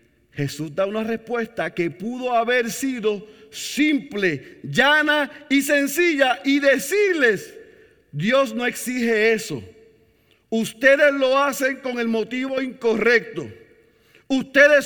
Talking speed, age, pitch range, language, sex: 105 wpm, 40-59, 165-255 Hz, Spanish, male